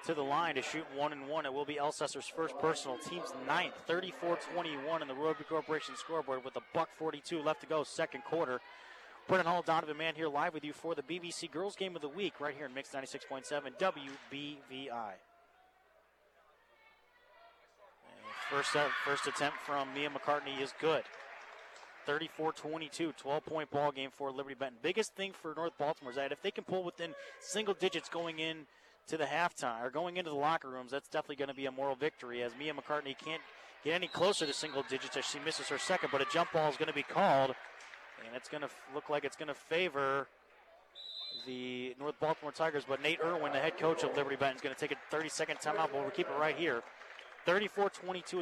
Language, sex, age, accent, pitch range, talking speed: English, male, 30-49, American, 140-165 Hz, 205 wpm